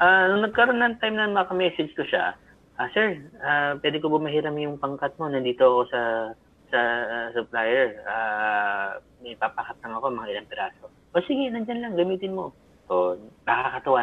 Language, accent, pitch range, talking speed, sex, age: Filipino, native, 115-170 Hz, 175 wpm, male, 30-49